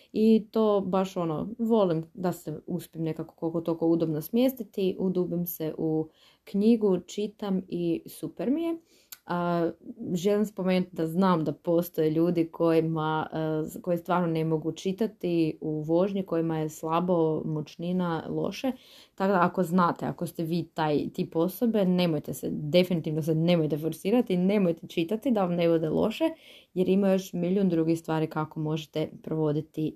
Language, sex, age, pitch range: Croatian, female, 20-39, 165-205 Hz